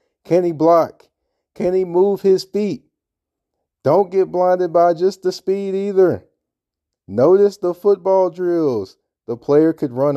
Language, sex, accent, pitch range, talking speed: English, male, American, 100-165 Hz, 140 wpm